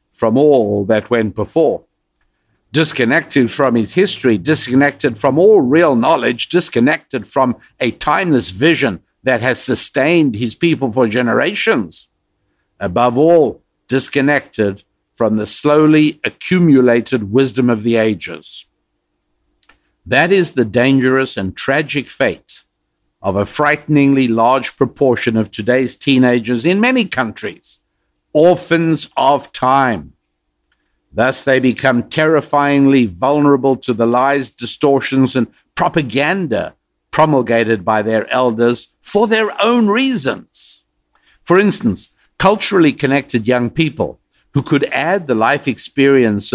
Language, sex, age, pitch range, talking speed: English, male, 60-79, 115-150 Hz, 115 wpm